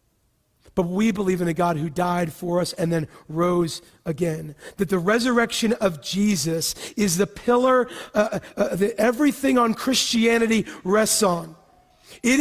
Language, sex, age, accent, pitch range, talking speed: English, male, 40-59, American, 195-260 Hz, 150 wpm